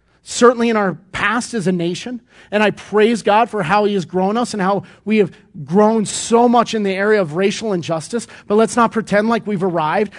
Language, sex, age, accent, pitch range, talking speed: English, male, 40-59, American, 180-230 Hz, 220 wpm